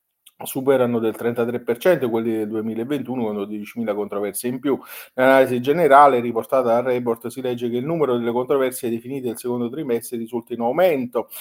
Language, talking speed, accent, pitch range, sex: Italian, 160 wpm, native, 115-150 Hz, male